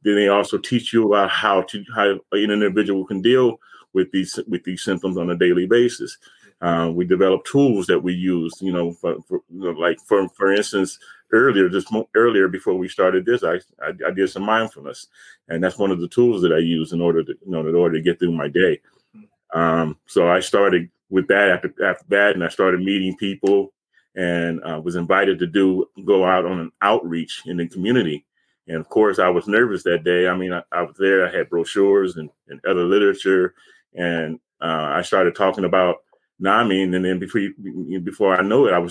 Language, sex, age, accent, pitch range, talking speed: English, male, 30-49, American, 85-100 Hz, 210 wpm